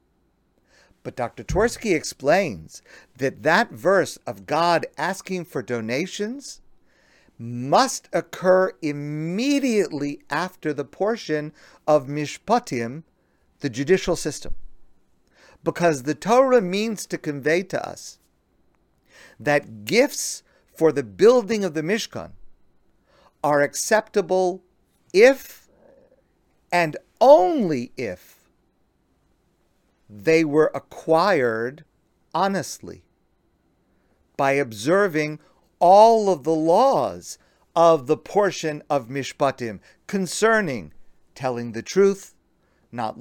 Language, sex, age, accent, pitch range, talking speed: English, male, 50-69, American, 135-190 Hz, 90 wpm